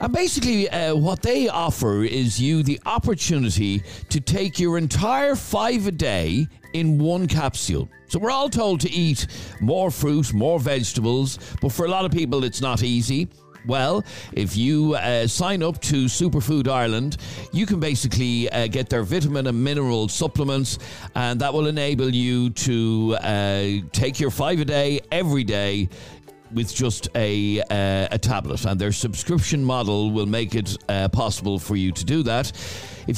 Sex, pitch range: male, 105-150 Hz